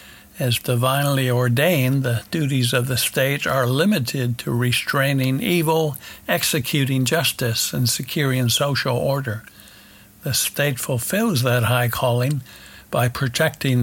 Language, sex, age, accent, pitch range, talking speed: English, male, 60-79, American, 120-140 Hz, 115 wpm